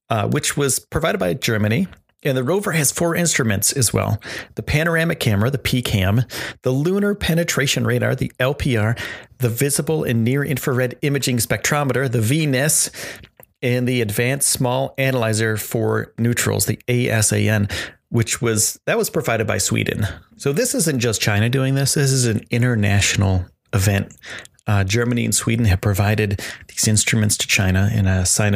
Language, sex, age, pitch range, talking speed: English, male, 30-49, 105-130 Hz, 155 wpm